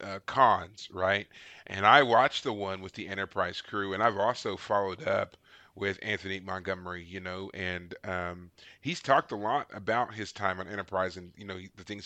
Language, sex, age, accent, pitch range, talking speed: English, male, 30-49, American, 95-125 Hz, 190 wpm